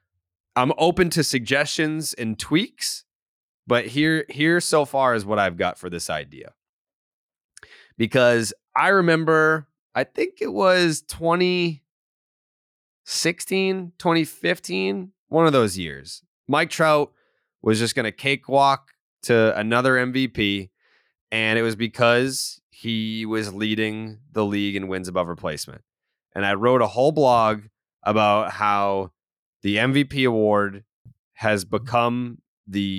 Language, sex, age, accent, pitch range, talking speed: English, male, 20-39, American, 105-150 Hz, 125 wpm